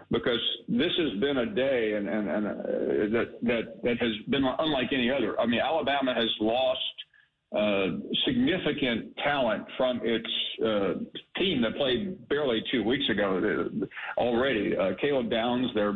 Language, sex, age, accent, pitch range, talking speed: English, male, 50-69, American, 110-120 Hz, 150 wpm